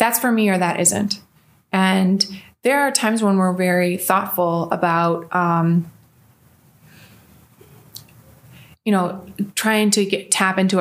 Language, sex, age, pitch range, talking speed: English, female, 20-39, 170-195 Hz, 120 wpm